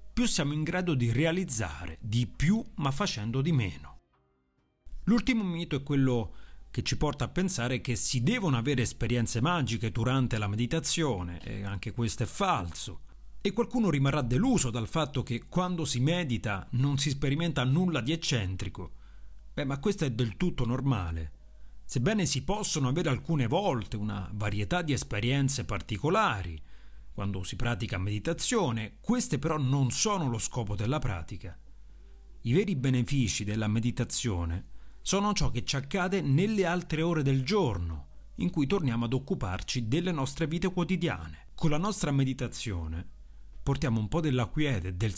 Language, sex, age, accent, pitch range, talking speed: Italian, male, 40-59, native, 100-160 Hz, 155 wpm